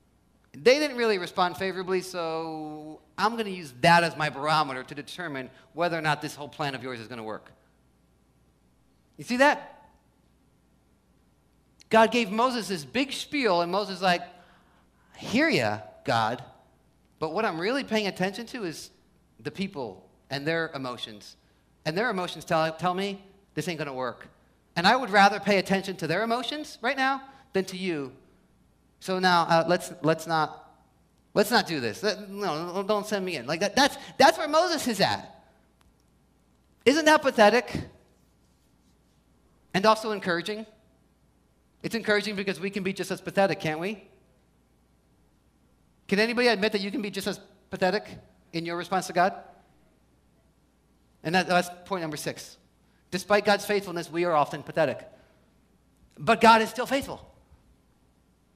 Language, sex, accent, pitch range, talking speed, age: English, male, American, 155-210 Hz, 160 wpm, 40-59